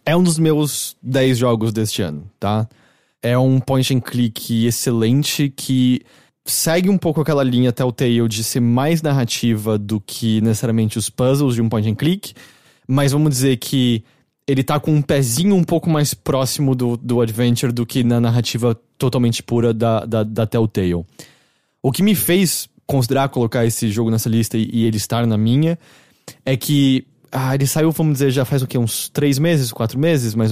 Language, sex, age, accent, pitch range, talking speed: English, male, 20-39, Brazilian, 120-150 Hz, 185 wpm